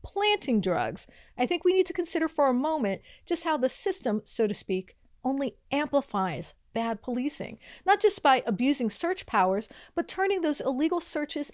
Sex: female